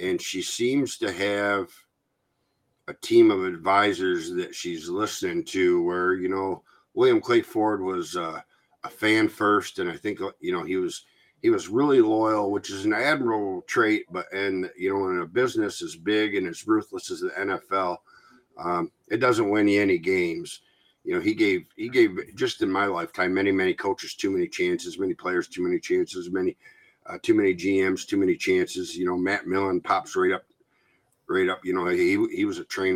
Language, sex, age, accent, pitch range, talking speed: English, male, 50-69, American, 300-360 Hz, 195 wpm